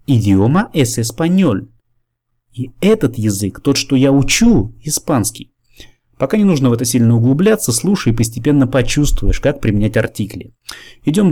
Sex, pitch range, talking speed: male, 115-140 Hz, 145 wpm